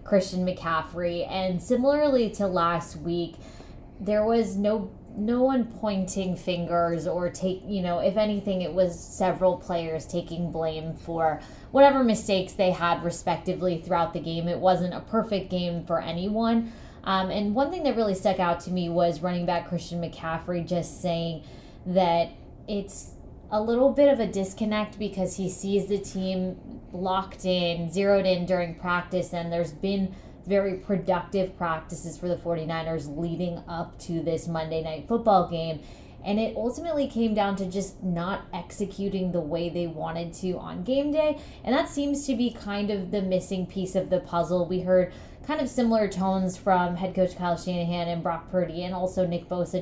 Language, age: English, 20-39